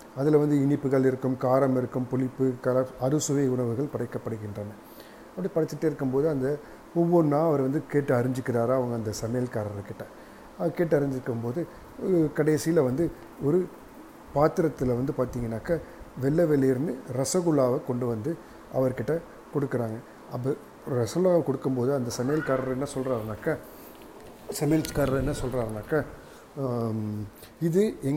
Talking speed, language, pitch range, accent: 105 wpm, English, 125-155 Hz, Indian